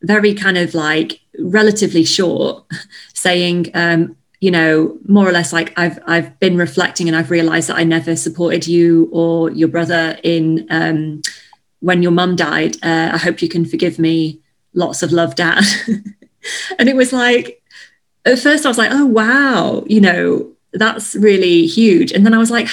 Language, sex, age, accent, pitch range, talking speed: English, female, 30-49, British, 165-220 Hz, 175 wpm